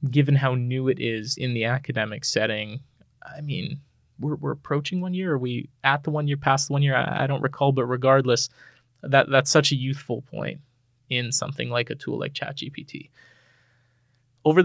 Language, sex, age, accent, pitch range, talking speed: English, male, 20-39, American, 120-140 Hz, 190 wpm